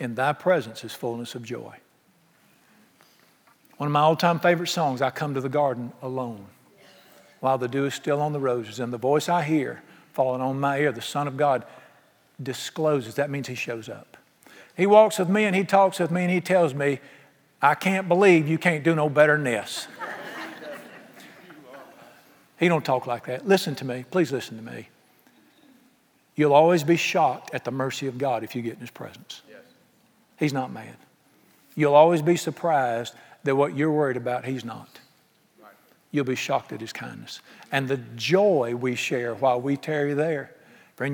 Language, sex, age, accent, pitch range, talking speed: English, male, 50-69, American, 130-165 Hz, 185 wpm